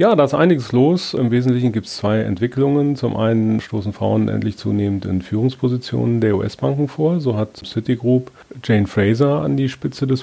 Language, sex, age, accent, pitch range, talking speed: German, male, 30-49, German, 105-120 Hz, 180 wpm